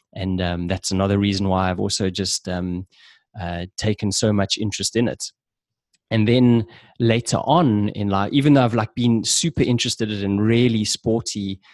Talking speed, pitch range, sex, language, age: 170 wpm, 95-115 Hz, male, English, 20-39